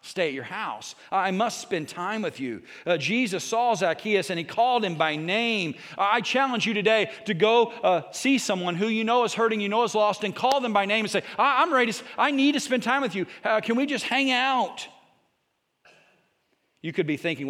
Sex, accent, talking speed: male, American, 220 wpm